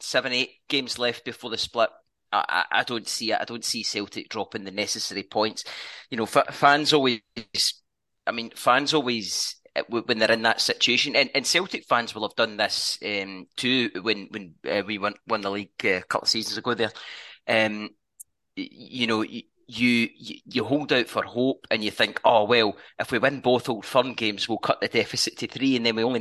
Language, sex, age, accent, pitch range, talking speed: English, male, 30-49, British, 105-125 Hz, 210 wpm